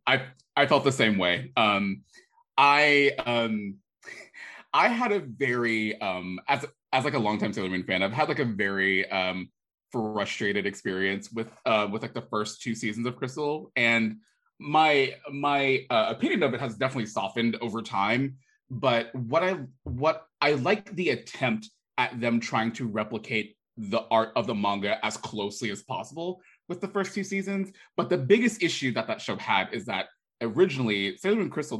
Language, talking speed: English, 175 wpm